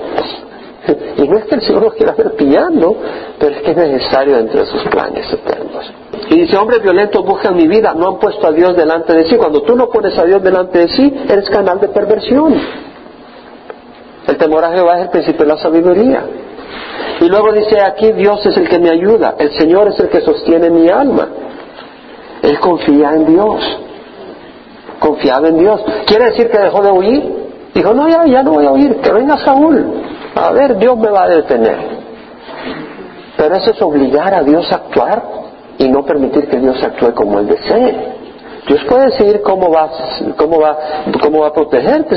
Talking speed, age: 190 wpm, 50-69